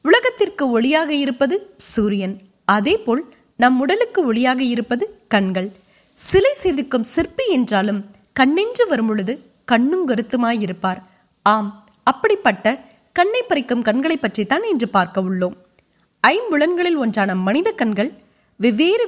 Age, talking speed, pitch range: 20-39, 100 wpm, 210-325 Hz